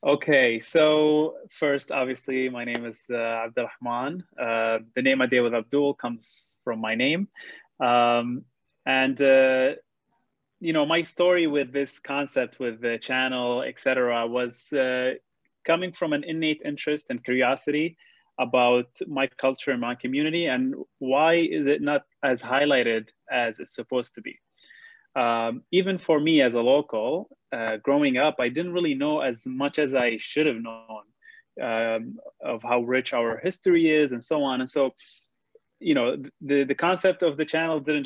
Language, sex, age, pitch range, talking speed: English, male, 20-39, 125-165 Hz, 160 wpm